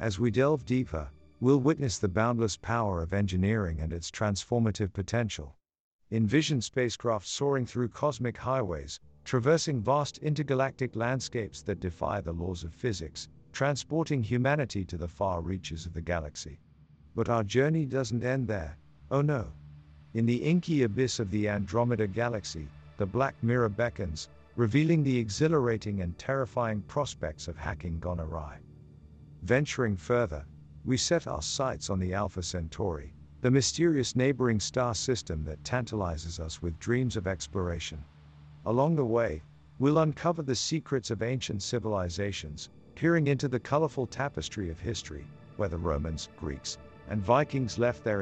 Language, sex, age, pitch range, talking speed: English, male, 50-69, 85-125 Hz, 145 wpm